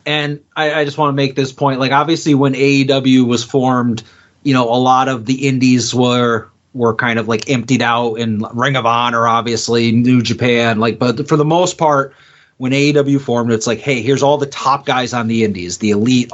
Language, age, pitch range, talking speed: English, 30-49, 120-150 Hz, 215 wpm